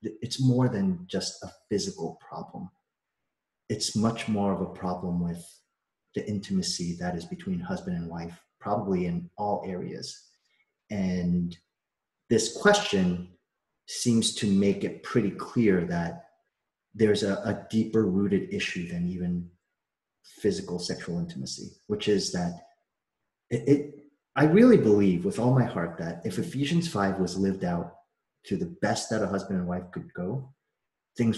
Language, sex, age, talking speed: English, male, 30-49, 145 wpm